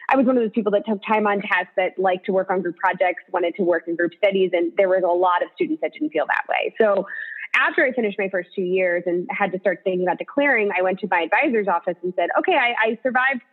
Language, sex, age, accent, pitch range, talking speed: English, female, 20-39, American, 175-230 Hz, 280 wpm